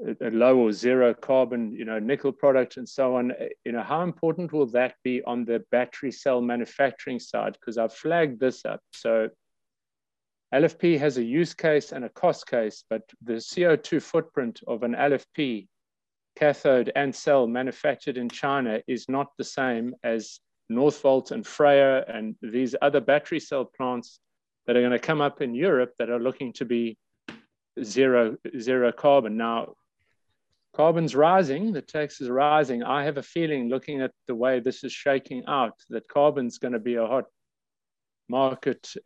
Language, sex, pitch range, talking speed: English, male, 125-150 Hz, 170 wpm